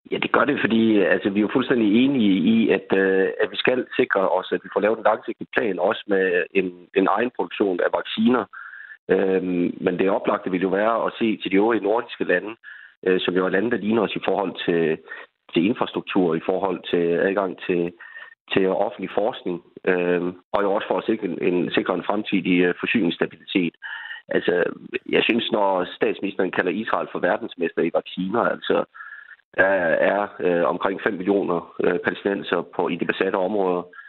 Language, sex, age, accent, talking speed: Danish, male, 30-49, native, 185 wpm